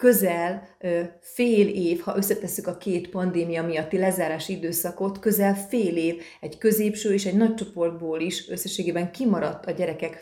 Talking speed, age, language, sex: 145 wpm, 30-49, Hungarian, female